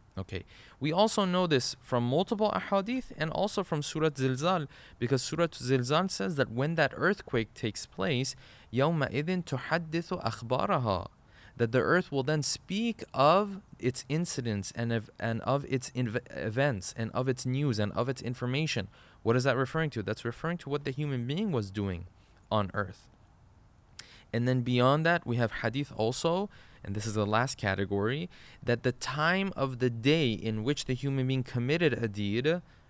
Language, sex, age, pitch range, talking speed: English, male, 20-39, 105-150 Hz, 170 wpm